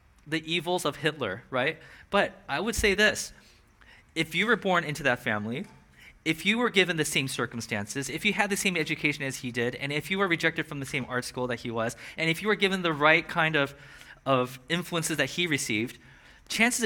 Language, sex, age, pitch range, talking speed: English, male, 20-39, 145-195 Hz, 215 wpm